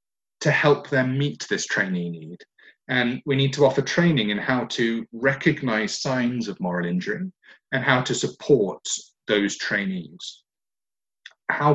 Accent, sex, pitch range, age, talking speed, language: British, male, 110-150 Hz, 30-49, 145 wpm, English